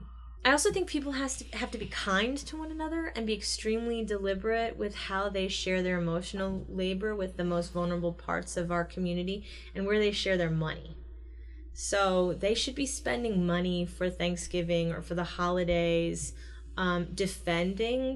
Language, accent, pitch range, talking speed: English, American, 170-195 Hz, 165 wpm